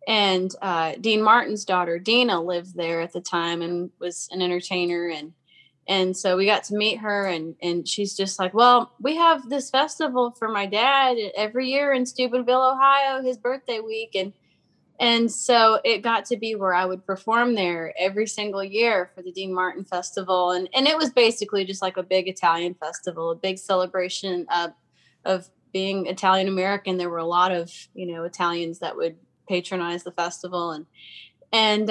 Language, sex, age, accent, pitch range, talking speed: English, female, 20-39, American, 175-215 Hz, 180 wpm